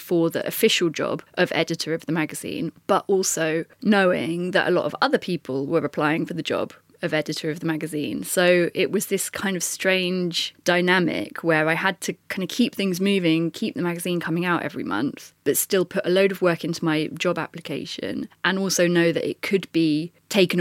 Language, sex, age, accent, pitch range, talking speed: English, female, 20-39, British, 160-195 Hz, 205 wpm